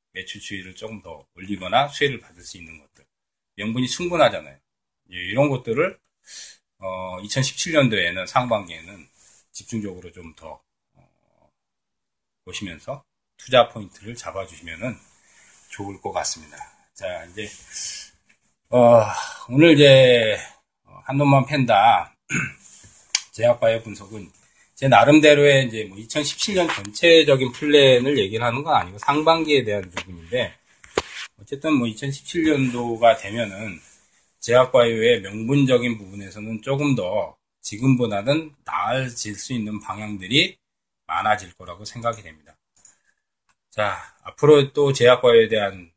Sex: male